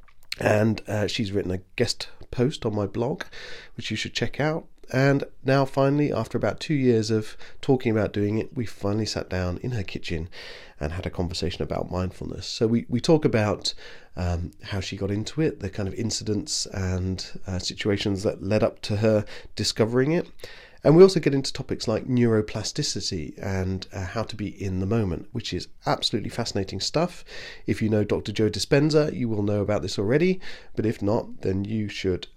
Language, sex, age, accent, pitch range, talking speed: English, male, 30-49, British, 95-130 Hz, 195 wpm